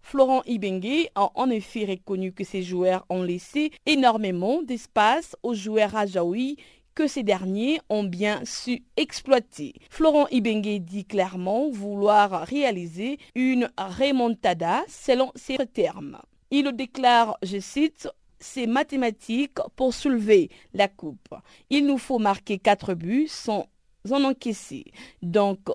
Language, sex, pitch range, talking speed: French, female, 200-265 Hz, 130 wpm